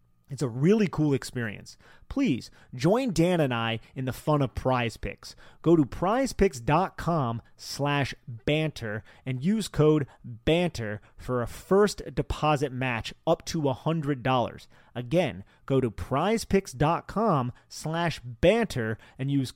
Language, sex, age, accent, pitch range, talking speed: English, male, 30-49, American, 115-165 Hz, 125 wpm